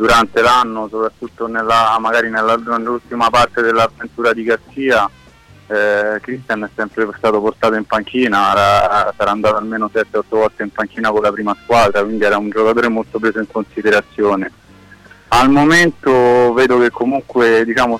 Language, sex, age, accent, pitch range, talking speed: Italian, male, 30-49, native, 110-120 Hz, 145 wpm